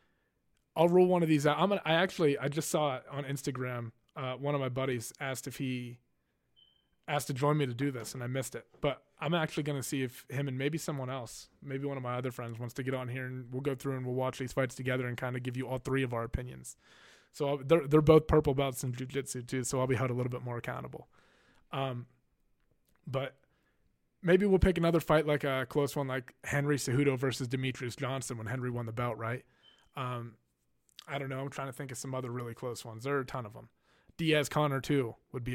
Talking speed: 245 wpm